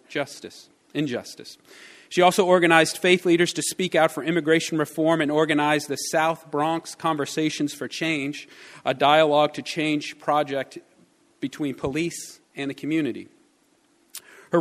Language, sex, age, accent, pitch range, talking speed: English, male, 40-59, American, 145-165 Hz, 130 wpm